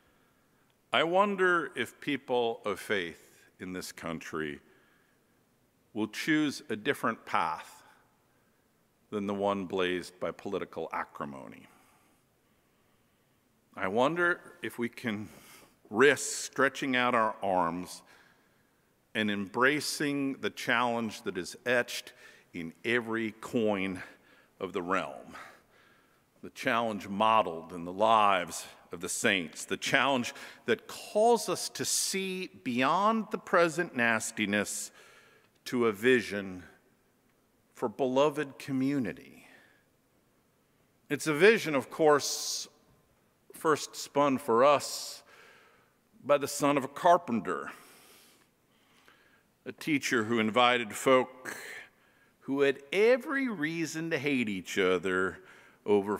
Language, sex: English, male